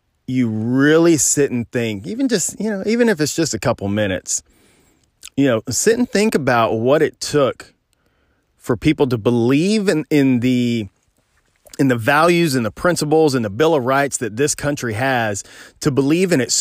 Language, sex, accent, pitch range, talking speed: English, male, American, 115-150 Hz, 185 wpm